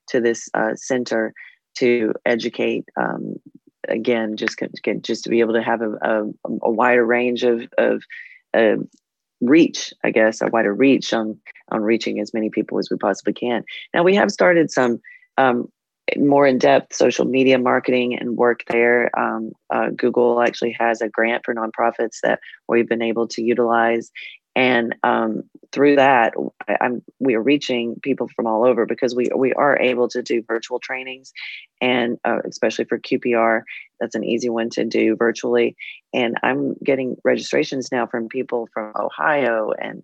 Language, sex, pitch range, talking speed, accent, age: English, female, 115-125 Hz, 170 wpm, American, 30-49